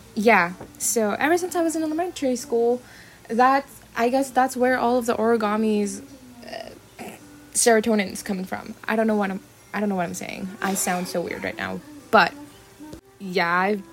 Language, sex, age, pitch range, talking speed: English, female, 10-29, 190-240 Hz, 185 wpm